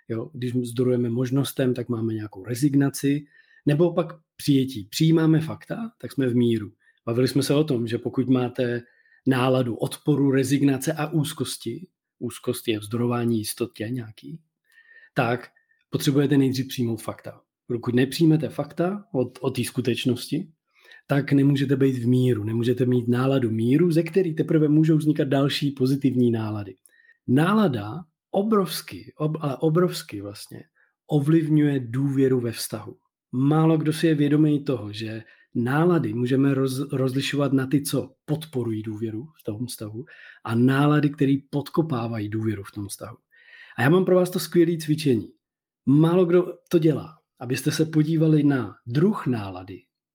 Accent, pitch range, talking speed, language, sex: native, 120-155 Hz, 140 wpm, Czech, male